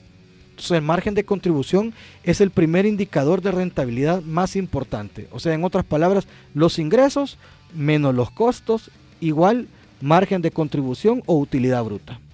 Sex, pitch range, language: male, 140-195 Hz, Spanish